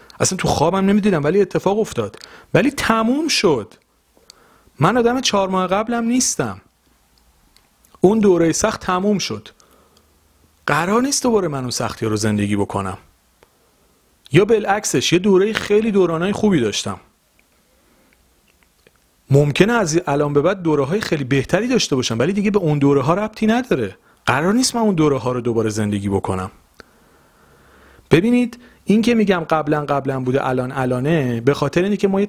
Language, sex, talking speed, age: Persian, male, 155 wpm, 40-59